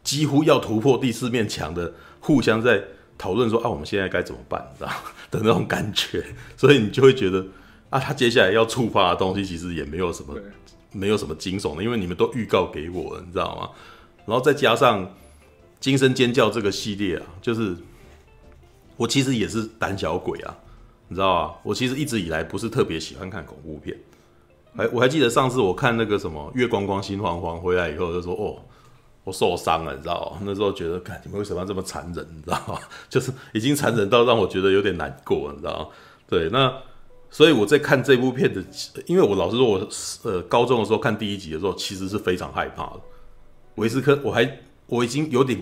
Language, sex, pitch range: Chinese, male, 90-120 Hz